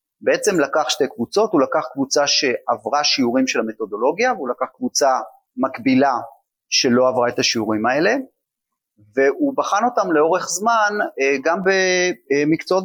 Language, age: Hebrew, 30-49